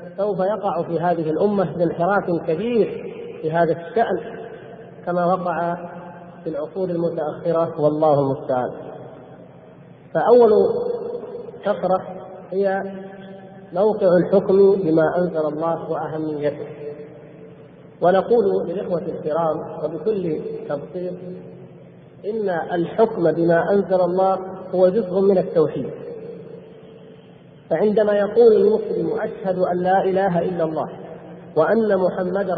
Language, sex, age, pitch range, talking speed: Arabic, male, 50-69, 165-200 Hz, 95 wpm